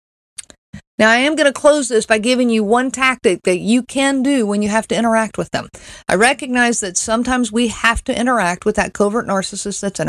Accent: American